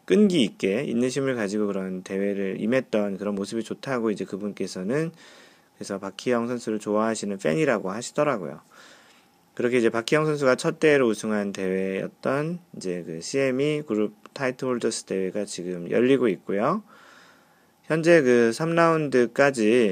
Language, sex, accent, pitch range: Korean, male, native, 105-145 Hz